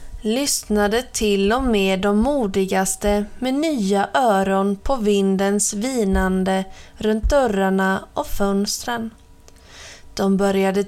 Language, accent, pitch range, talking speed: Swedish, native, 195-235 Hz, 100 wpm